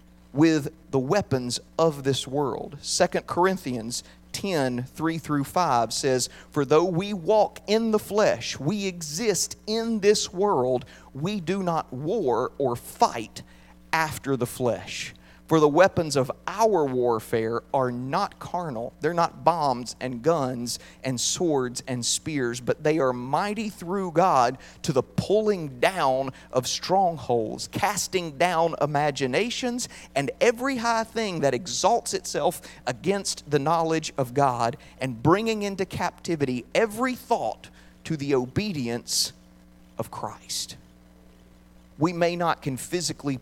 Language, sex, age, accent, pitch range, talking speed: English, male, 40-59, American, 125-175 Hz, 130 wpm